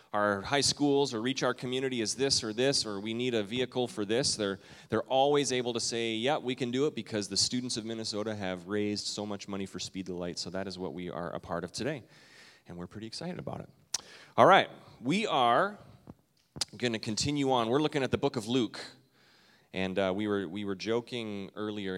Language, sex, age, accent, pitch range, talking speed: English, male, 30-49, American, 95-120 Hz, 225 wpm